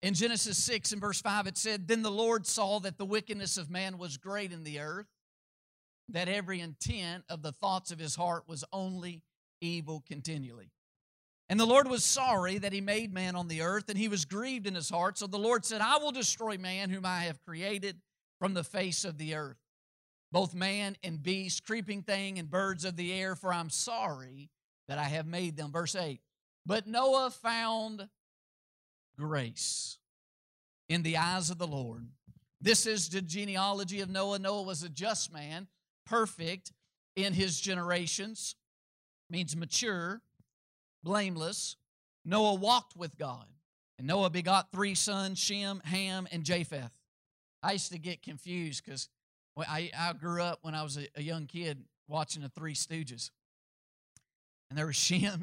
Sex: male